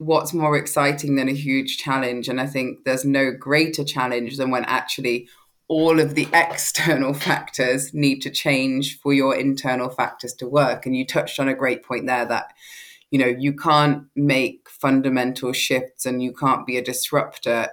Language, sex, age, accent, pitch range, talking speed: English, female, 20-39, British, 125-140 Hz, 180 wpm